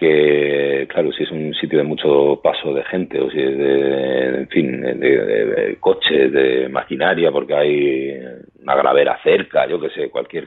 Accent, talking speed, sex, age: Spanish, 185 wpm, male, 40-59